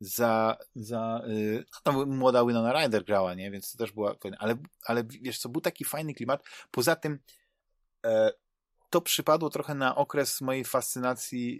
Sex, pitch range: male, 115-145 Hz